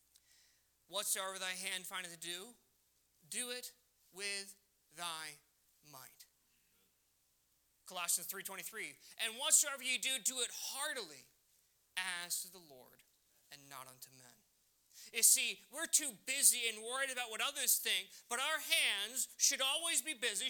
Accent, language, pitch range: American, English, 155-245 Hz